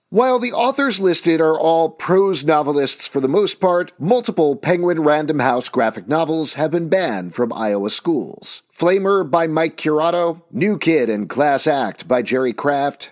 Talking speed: 165 wpm